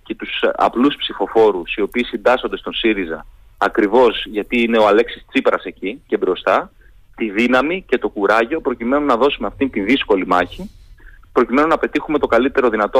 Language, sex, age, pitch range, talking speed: Greek, male, 30-49, 100-165 Hz, 165 wpm